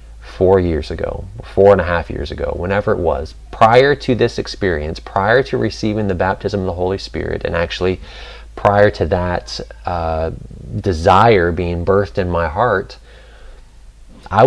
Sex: male